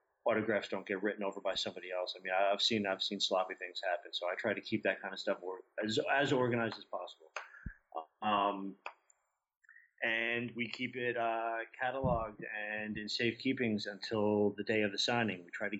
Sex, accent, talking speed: male, American, 195 wpm